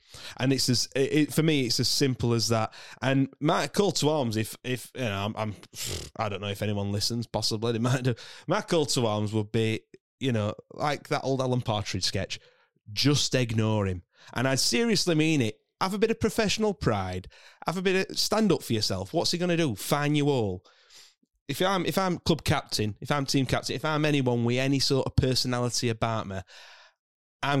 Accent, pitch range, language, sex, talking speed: British, 110-135 Hz, English, male, 215 wpm